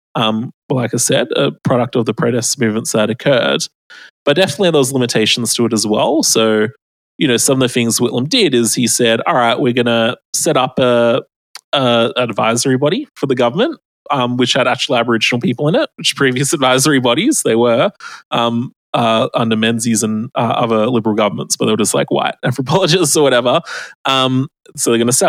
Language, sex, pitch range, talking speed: English, male, 115-135 Hz, 200 wpm